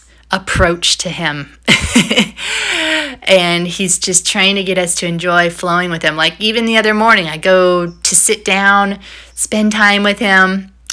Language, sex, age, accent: English, female, 30-49, American